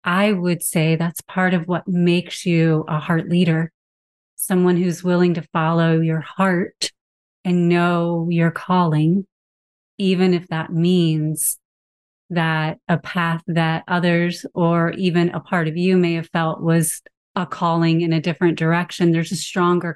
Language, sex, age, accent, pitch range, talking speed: English, female, 30-49, American, 160-185 Hz, 155 wpm